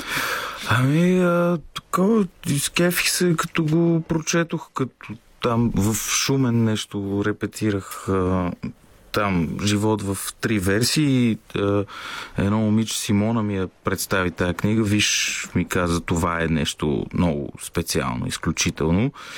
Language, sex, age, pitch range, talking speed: Bulgarian, male, 30-49, 95-115 Hz, 120 wpm